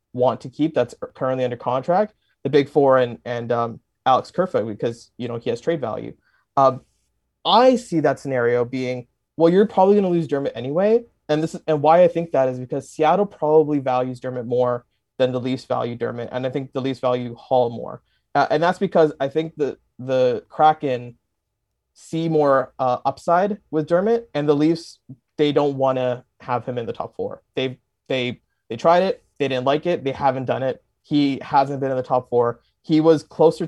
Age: 20-39